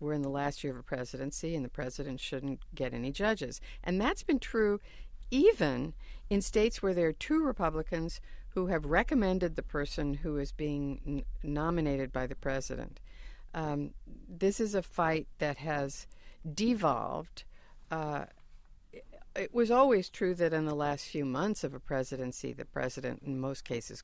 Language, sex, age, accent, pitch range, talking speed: English, female, 60-79, American, 135-175 Hz, 165 wpm